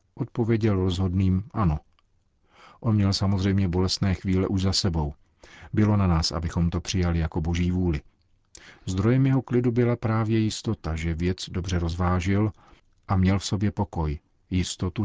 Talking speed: 145 wpm